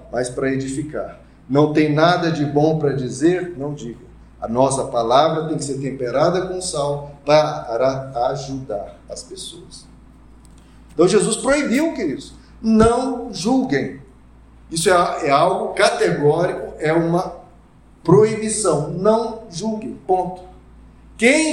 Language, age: Portuguese, 50-69